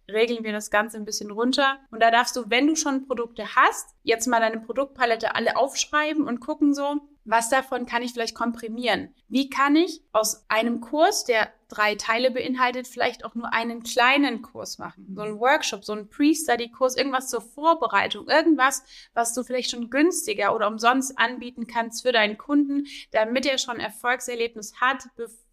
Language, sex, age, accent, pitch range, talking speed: German, female, 30-49, German, 225-265 Hz, 180 wpm